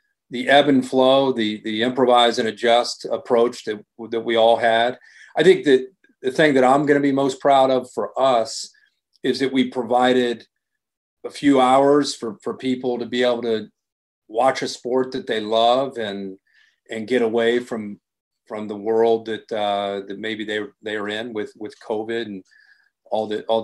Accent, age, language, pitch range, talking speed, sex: American, 40-59, English, 115-135 Hz, 185 wpm, male